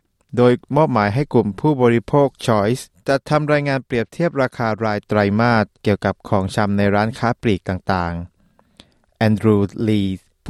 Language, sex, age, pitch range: Thai, male, 20-39, 100-130 Hz